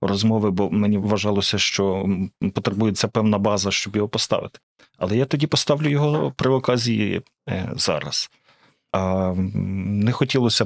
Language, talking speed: Ukrainian, 120 wpm